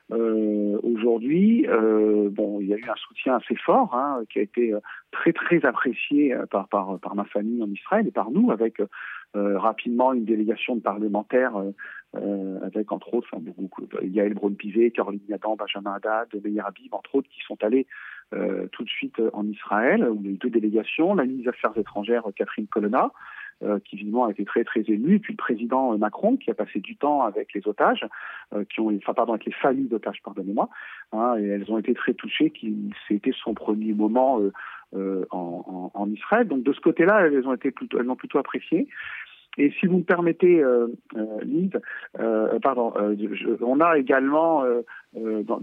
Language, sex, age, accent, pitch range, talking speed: French, male, 40-59, French, 105-130 Hz, 200 wpm